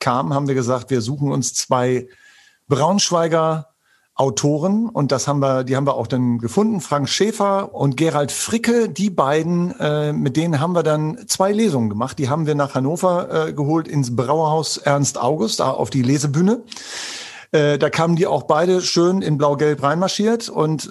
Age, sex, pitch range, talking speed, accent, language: 50-69, male, 130-155 Hz, 180 wpm, German, German